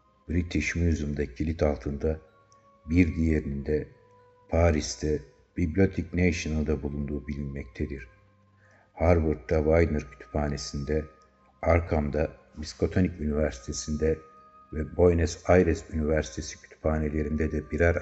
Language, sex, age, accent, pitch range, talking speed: Turkish, male, 60-79, native, 75-90 Hz, 80 wpm